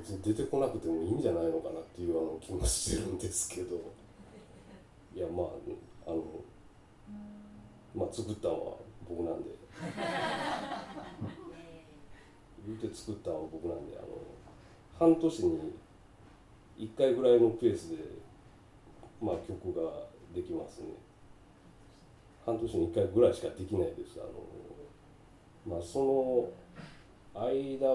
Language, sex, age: Japanese, male, 40-59